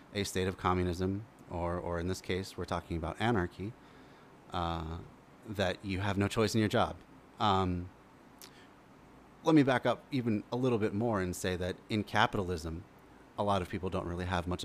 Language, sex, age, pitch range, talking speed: English, male, 30-49, 90-110 Hz, 185 wpm